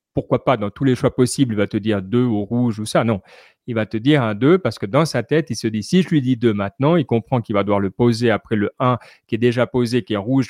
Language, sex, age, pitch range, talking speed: French, male, 30-49, 115-145 Hz, 310 wpm